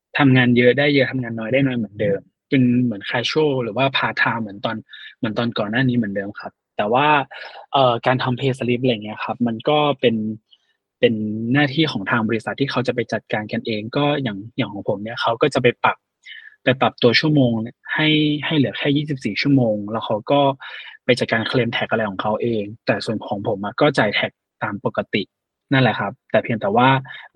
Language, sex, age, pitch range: Thai, male, 20-39, 115-140 Hz